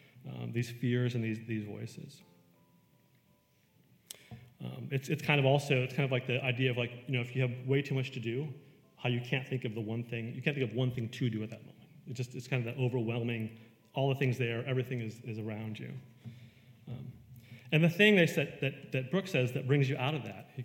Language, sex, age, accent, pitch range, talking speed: English, male, 30-49, American, 115-135 Hz, 240 wpm